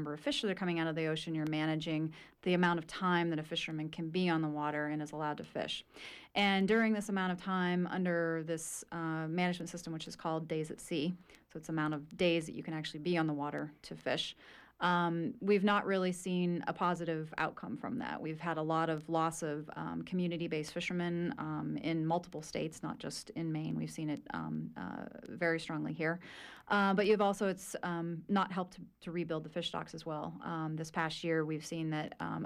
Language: English